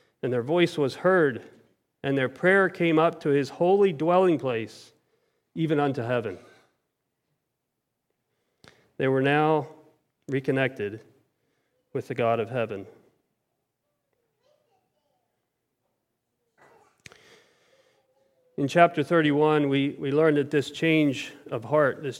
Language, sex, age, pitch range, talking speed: English, male, 40-59, 130-155 Hz, 105 wpm